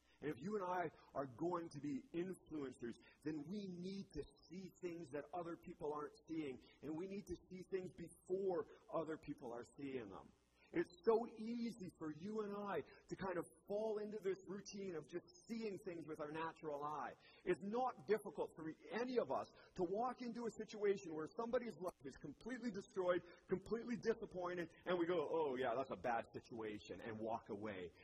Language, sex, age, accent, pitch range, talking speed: English, male, 40-59, American, 160-210 Hz, 185 wpm